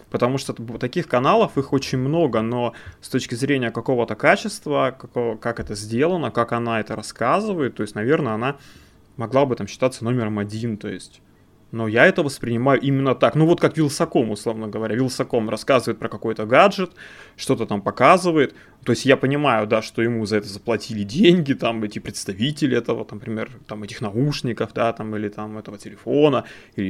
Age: 20-39